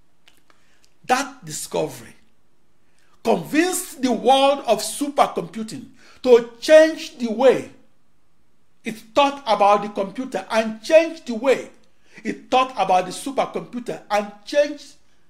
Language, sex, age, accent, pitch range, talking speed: English, male, 60-79, Nigerian, 200-270 Hz, 105 wpm